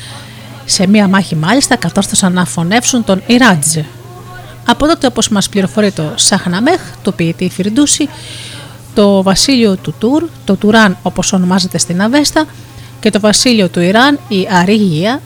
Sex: female